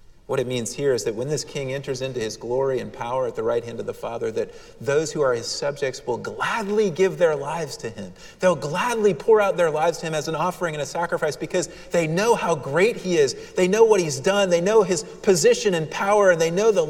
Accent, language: American, English